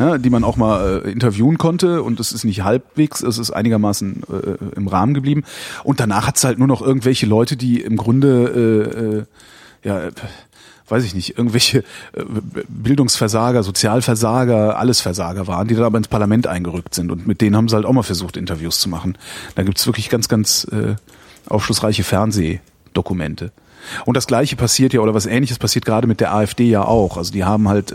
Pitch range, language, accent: 105-125 Hz, German, German